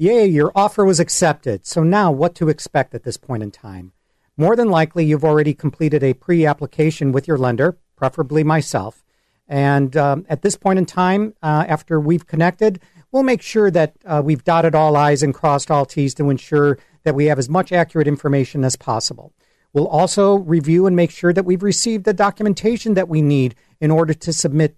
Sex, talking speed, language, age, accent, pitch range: male, 195 wpm, English, 50-69, American, 145-180 Hz